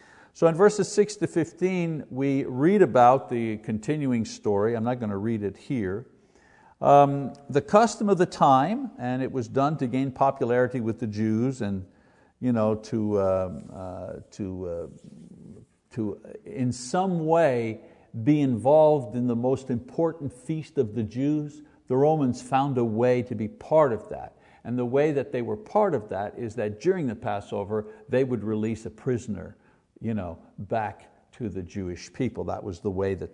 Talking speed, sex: 165 wpm, male